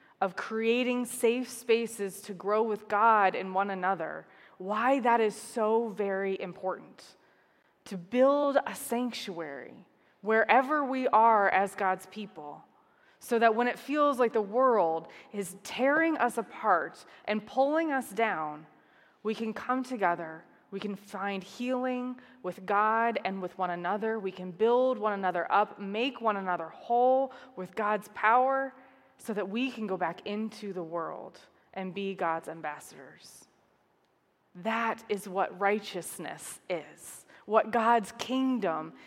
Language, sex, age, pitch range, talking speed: English, female, 20-39, 195-245 Hz, 140 wpm